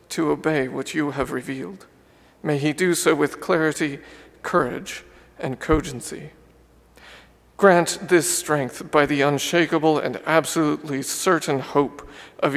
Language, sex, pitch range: English, male, 145-170 Hz